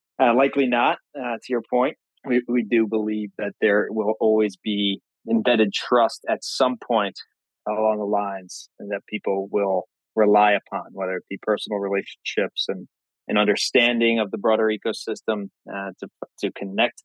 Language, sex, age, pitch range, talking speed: English, male, 20-39, 105-120 Hz, 160 wpm